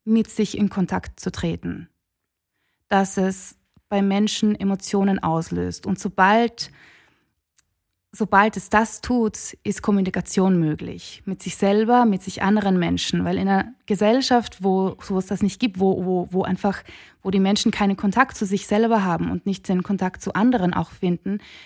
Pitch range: 190-210 Hz